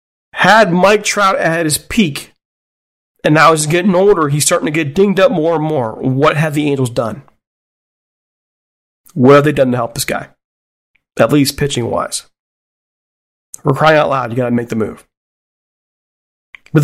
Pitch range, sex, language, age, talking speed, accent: 135-170 Hz, male, English, 40-59, 170 wpm, American